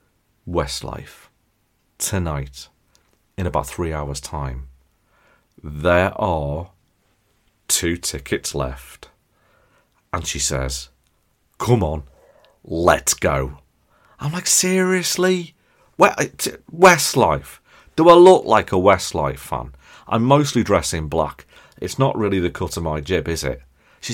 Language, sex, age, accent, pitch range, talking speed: English, male, 40-59, British, 75-110 Hz, 110 wpm